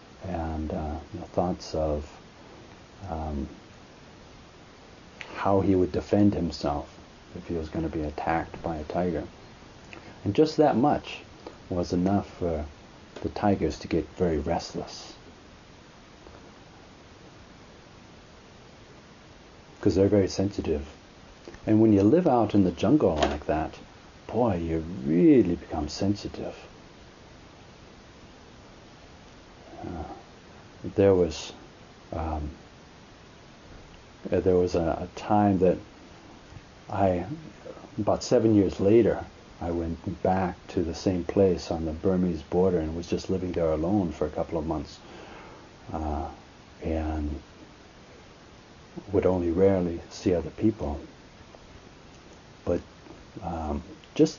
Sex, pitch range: male, 80-100 Hz